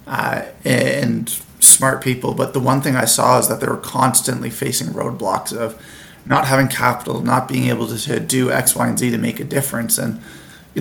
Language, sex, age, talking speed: English, male, 30-49, 205 wpm